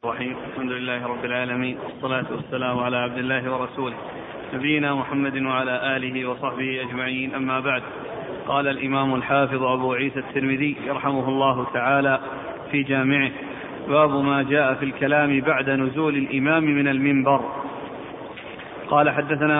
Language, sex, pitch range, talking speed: Arabic, male, 140-155 Hz, 125 wpm